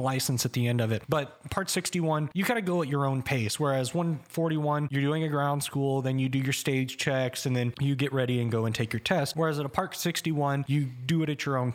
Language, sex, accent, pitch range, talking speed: English, male, American, 125-150 Hz, 265 wpm